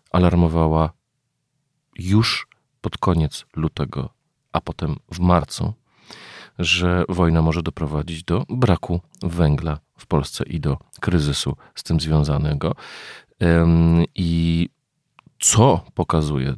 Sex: male